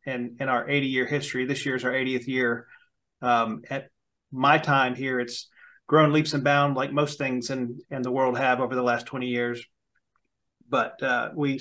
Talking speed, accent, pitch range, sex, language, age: 190 wpm, American, 125-145 Hz, male, English, 30-49